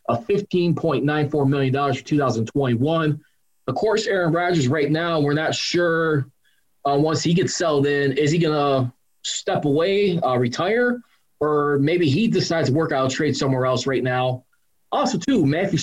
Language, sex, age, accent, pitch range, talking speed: English, male, 20-39, American, 130-160 Hz, 170 wpm